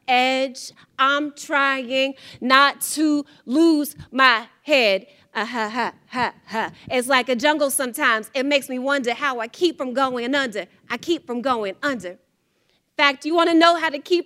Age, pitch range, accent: 30-49, 240-300 Hz, American